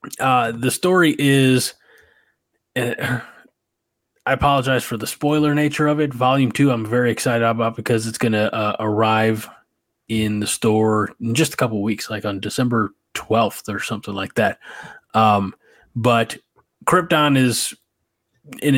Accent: American